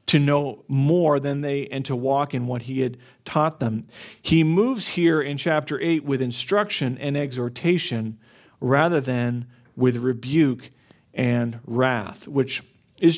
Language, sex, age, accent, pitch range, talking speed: English, male, 40-59, American, 125-155 Hz, 145 wpm